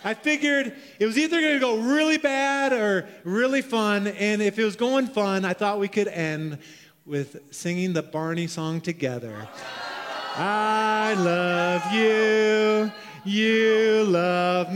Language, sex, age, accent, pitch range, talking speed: English, male, 30-49, American, 170-220 Hz, 140 wpm